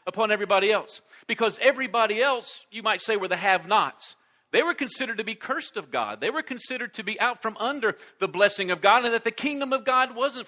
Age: 50-69